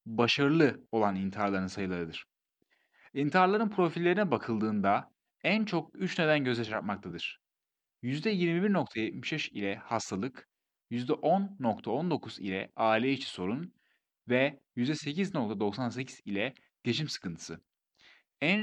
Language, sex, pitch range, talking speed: Turkish, male, 115-170 Hz, 85 wpm